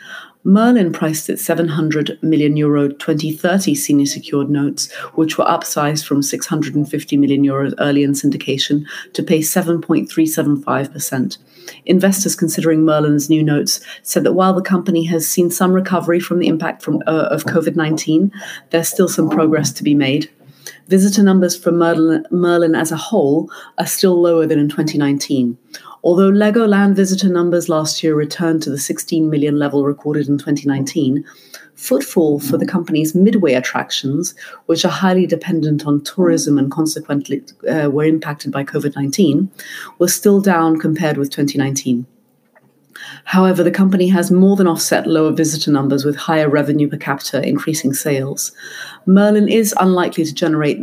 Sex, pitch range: female, 145-175 Hz